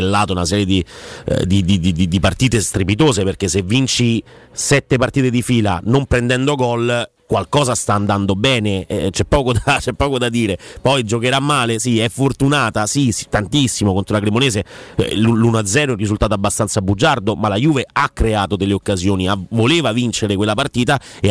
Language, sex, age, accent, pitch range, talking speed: Italian, male, 30-49, native, 100-130 Hz, 180 wpm